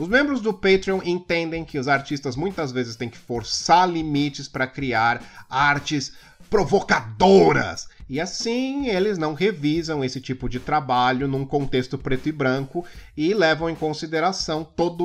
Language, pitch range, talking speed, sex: Portuguese, 125-165 Hz, 150 wpm, male